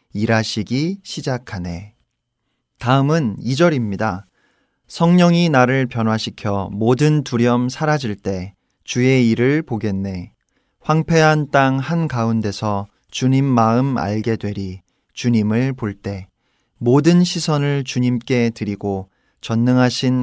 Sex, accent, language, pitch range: male, native, Korean, 110-145 Hz